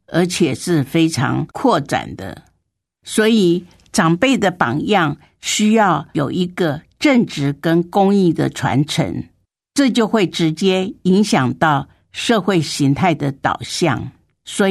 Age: 50-69